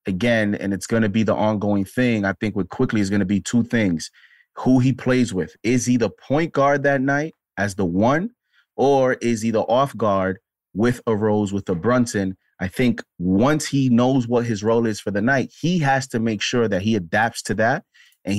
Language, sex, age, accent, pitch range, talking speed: English, male, 30-49, American, 100-130 Hz, 220 wpm